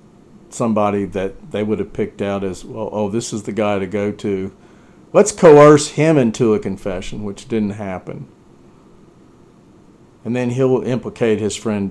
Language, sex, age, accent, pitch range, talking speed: English, male, 50-69, American, 100-120 Hz, 160 wpm